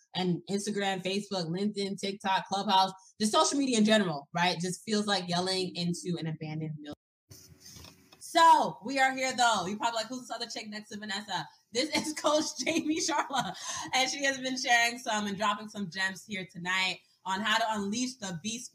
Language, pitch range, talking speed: English, 180-235 Hz, 185 wpm